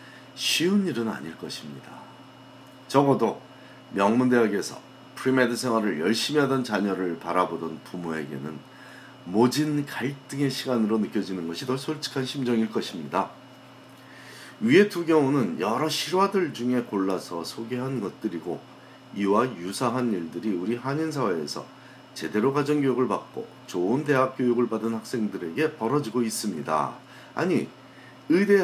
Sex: male